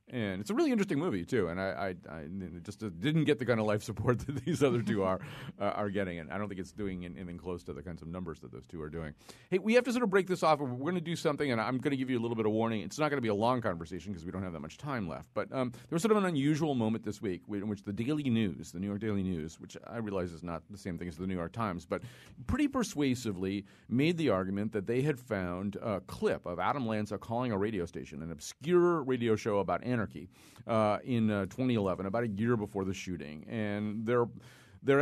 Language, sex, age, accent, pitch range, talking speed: English, male, 40-59, American, 95-125 Hz, 270 wpm